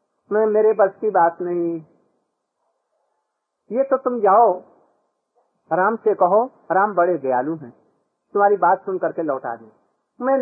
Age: 50-69